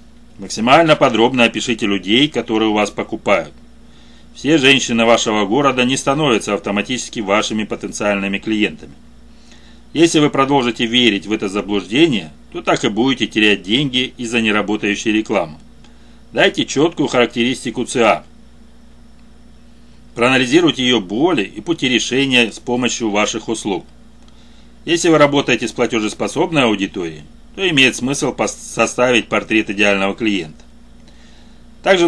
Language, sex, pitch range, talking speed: Russian, male, 105-125 Hz, 115 wpm